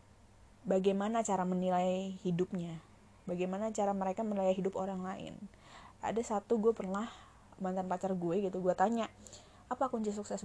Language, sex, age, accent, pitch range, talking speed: English, female, 20-39, Indonesian, 185-235 Hz, 140 wpm